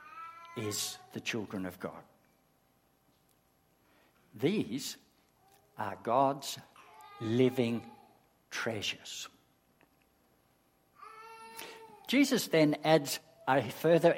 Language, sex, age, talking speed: English, male, 60-79, 65 wpm